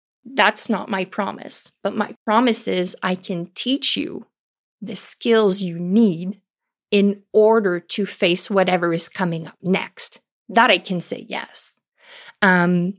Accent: American